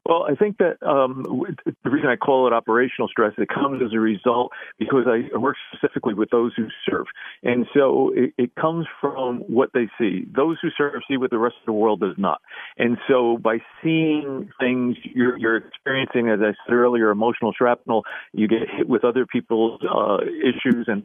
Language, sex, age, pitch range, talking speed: English, male, 50-69, 115-135 Hz, 195 wpm